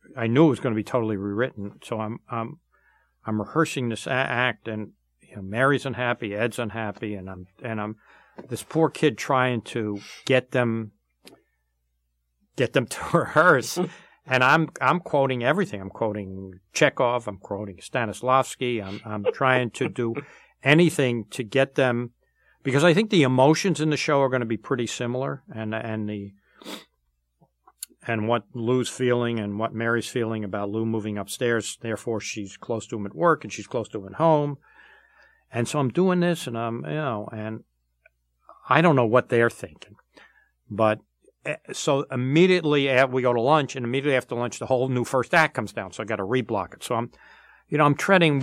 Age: 60-79